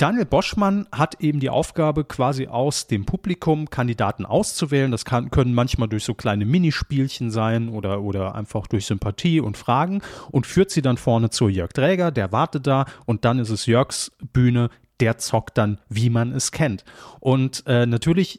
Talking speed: 180 wpm